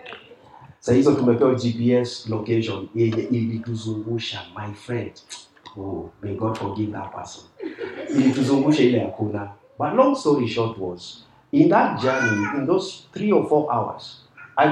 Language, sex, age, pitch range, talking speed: English, male, 50-69, 115-150 Hz, 100 wpm